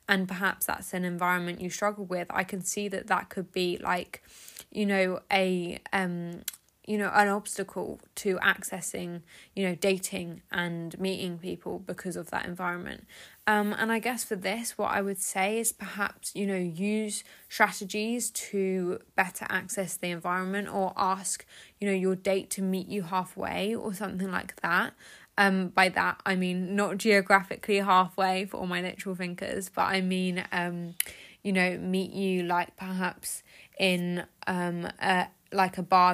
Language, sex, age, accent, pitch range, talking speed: English, female, 10-29, British, 180-200 Hz, 165 wpm